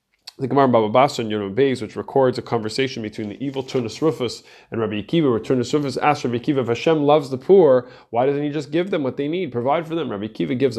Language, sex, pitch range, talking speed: English, male, 115-145 Hz, 240 wpm